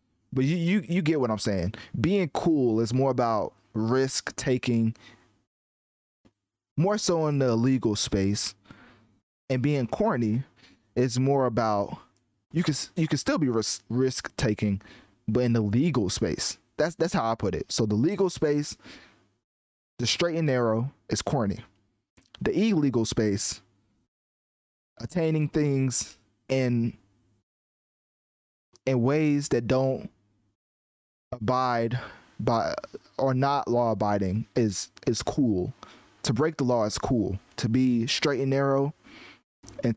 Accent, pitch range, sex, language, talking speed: American, 110-140 Hz, male, English, 130 wpm